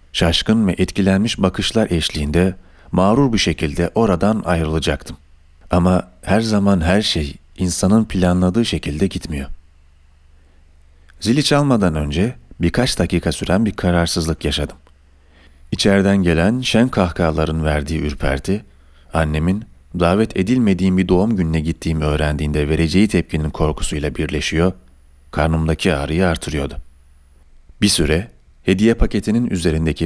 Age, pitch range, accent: 40-59, 70-95 Hz, native